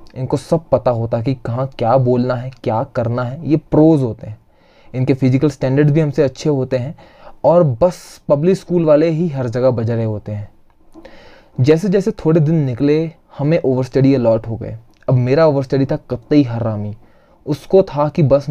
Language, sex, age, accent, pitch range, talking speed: Hindi, male, 20-39, native, 125-160 Hz, 180 wpm